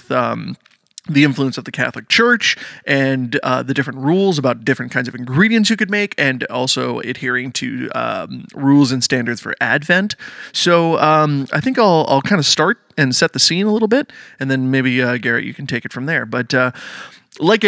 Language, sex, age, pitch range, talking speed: English, male, 20-39, 130-165 Hz, 205 wpm